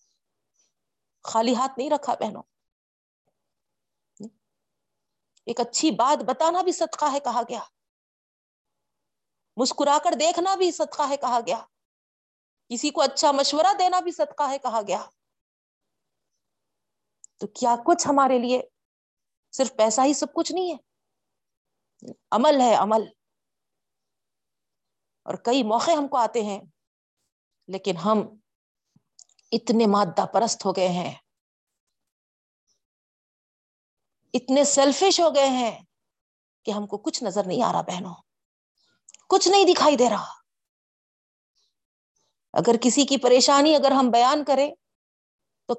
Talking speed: 120 wpm